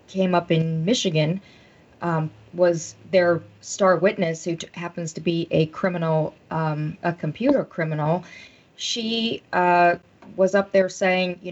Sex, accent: female, American